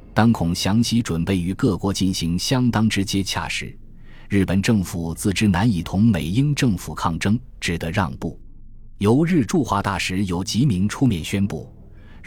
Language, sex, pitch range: Chinese, male, 90-115 Hz